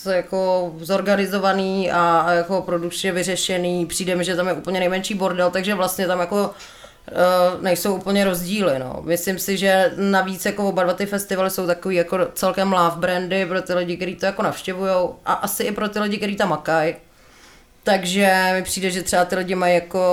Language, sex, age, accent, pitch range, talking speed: Czech, female, 30-49, native, 160-190 Hz, 190 wpm